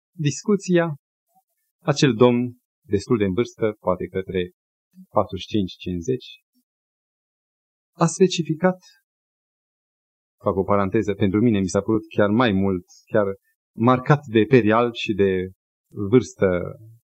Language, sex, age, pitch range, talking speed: Romanian, male, 30-49, 115-190 Hz, 105 wpm